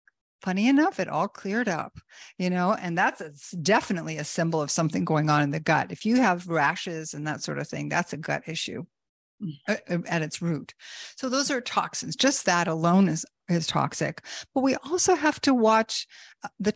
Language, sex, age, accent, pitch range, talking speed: English, female, 50-69, American, 165-205 Hz, 195 wpm